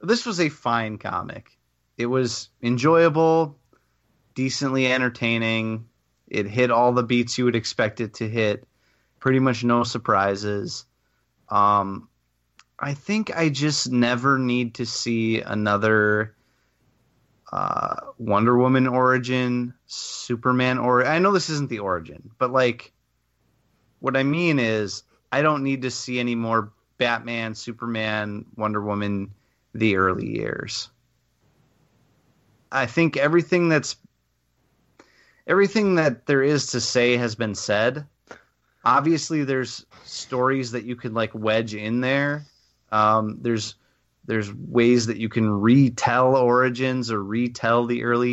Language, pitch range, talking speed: English, 110-135 Hz, 130 wpm